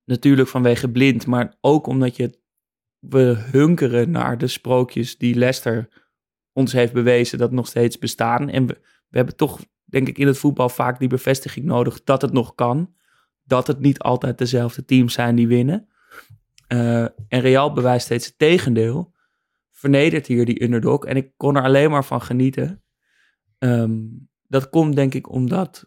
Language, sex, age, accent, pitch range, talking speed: Dutch, male, 20-39, Dutch, 120-140 Hz, 170 wpm